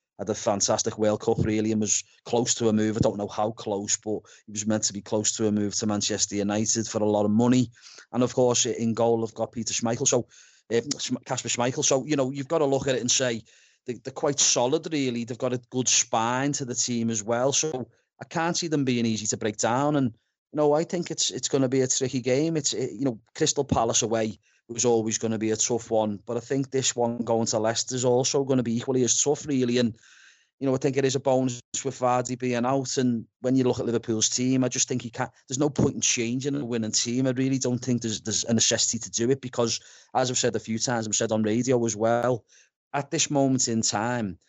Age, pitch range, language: 30-49, 110-130 Hz, English